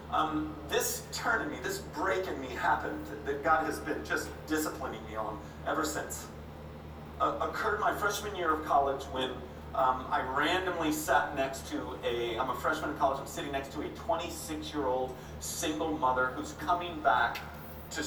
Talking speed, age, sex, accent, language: 180 wpm, 40-59, male, American, English